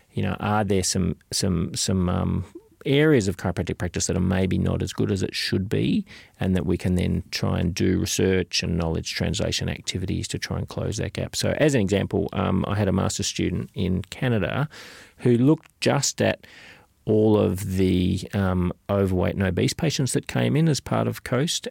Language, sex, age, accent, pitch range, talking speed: English, male, 30-49, Australian, 90-105 Hz, 200 wpm